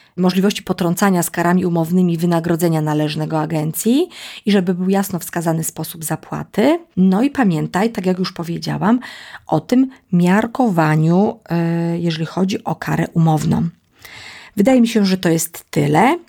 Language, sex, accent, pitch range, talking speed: Polish, female, native, 165-210 Hz, 135 wpm